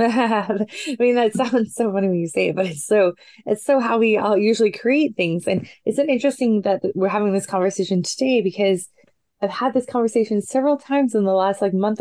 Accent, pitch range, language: American, 180-220 Hz, English